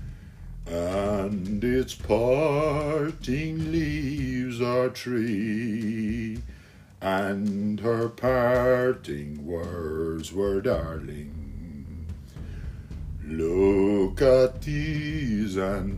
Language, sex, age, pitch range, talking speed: English, male, 50-69, 85-125 Hz, 60 wpm